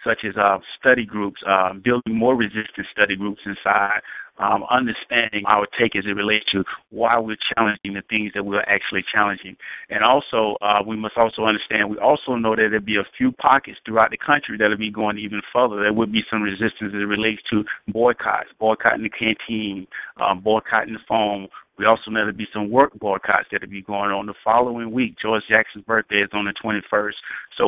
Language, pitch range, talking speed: English, 100-115 Hz, 210 wpm